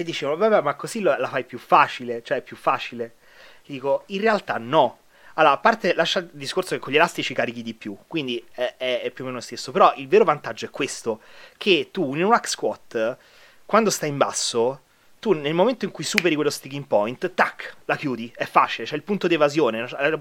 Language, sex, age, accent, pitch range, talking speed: Italian, male, 30-49, native, 135-205 Hz, 225 wpm